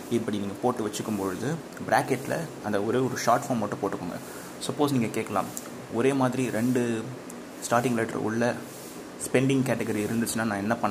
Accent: native